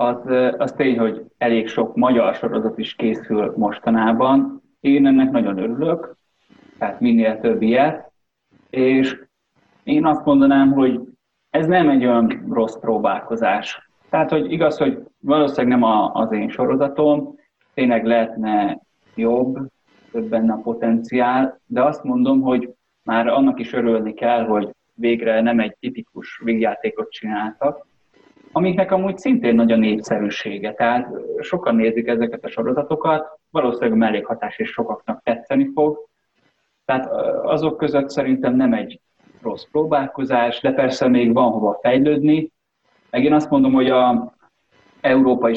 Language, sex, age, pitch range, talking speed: Hungarian, male, 30-49, 115-150 Hz, 135 wpm